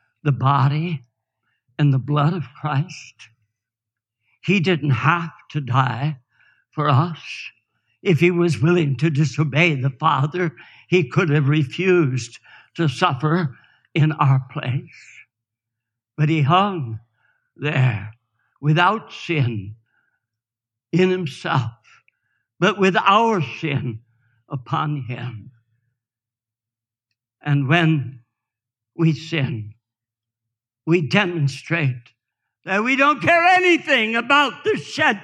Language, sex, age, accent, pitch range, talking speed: English, male, 60-79, American, 125-185 Hz, 100 wpm